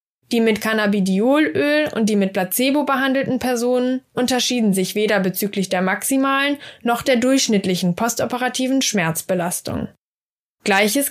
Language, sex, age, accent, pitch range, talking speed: German, female, 10-29, German, 200-265 Hz, 115 wpm